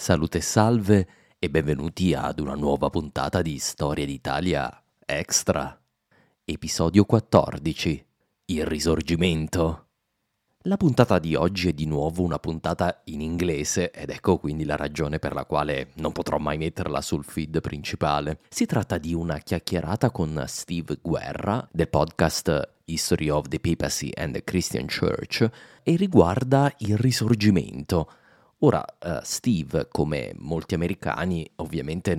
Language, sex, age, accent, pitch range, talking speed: Italian, male, 30-49, native, 75-90 Hz, 135 wpm